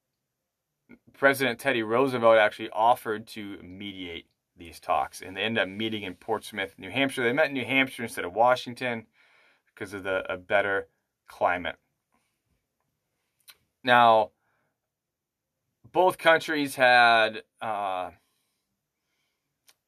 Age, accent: 20-39, American